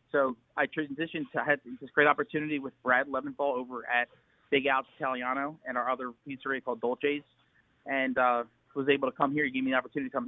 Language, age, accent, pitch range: English, 30-49, American, 125-145 Hz